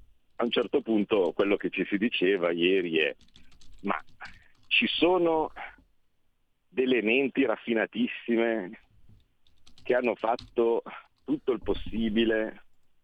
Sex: male